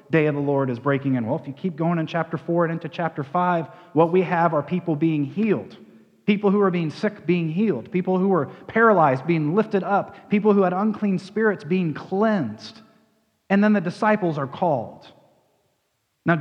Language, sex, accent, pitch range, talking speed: English, male, American, 140-185 Hz, 200 wpm